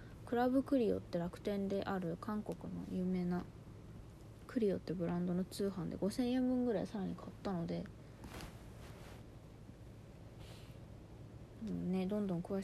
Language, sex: Japanese, female